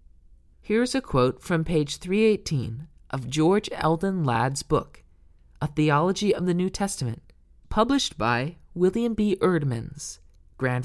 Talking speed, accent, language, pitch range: 135 wpm, American, English, 115-190 Hz